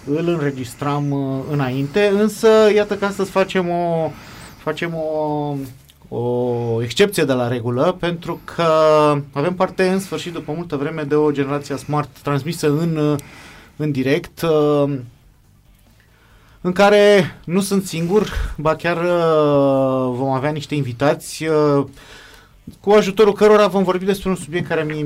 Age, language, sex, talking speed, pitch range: 30-49, Romanian, male, 140 wpm, 130-165 Hz